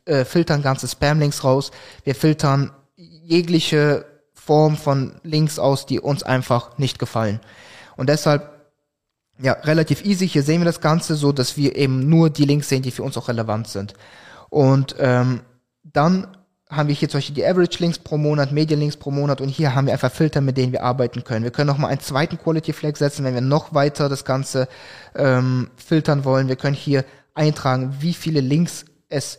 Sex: male